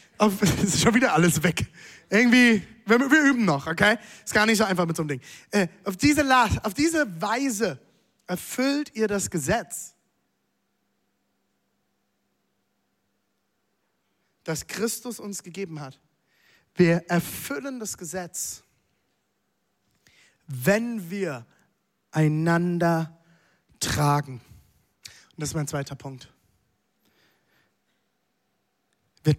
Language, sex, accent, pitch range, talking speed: German, male, German, 145-205 Hz, 100 wpm